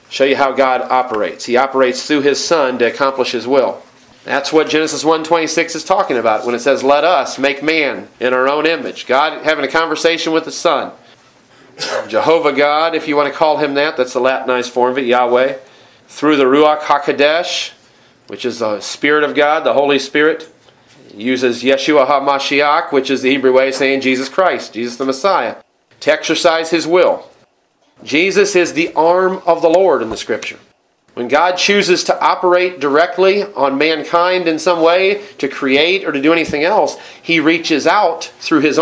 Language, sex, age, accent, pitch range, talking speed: English, male, 40-59, American, 135-170 Hz, 185 wpm